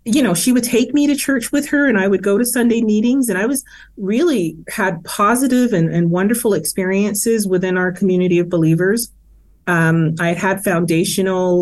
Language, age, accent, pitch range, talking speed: English, 30-49, American, 155-185 Hz, 190 wpm